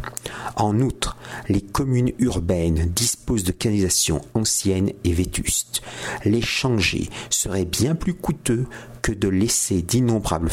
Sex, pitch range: male, 95-125 Hz